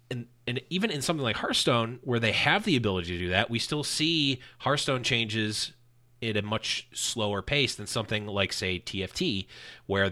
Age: 30-49